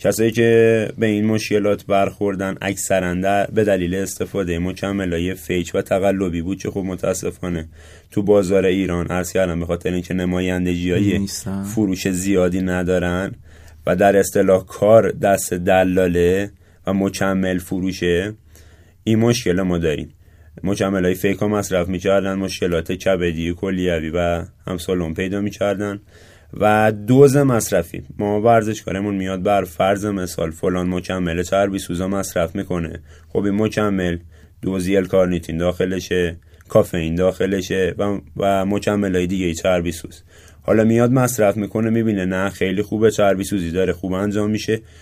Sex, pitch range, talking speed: male, 90-100 Hz, 140 wpm